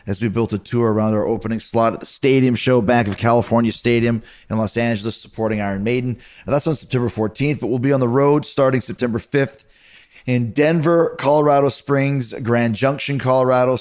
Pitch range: 115-140 Hz